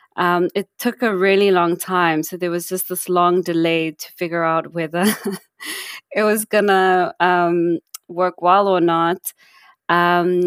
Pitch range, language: 170-195 Hz, English